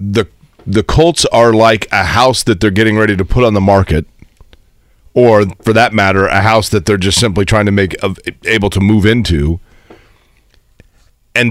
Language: English